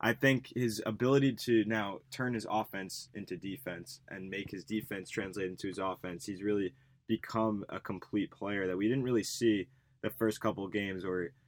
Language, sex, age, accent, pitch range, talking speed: English, male, 20-39, American, 105-125 Hz, 190 wpm